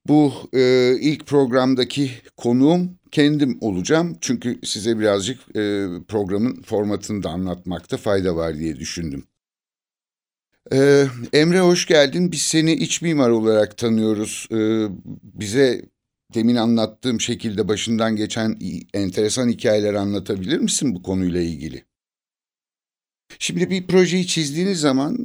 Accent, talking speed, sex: native, 115 wpm, male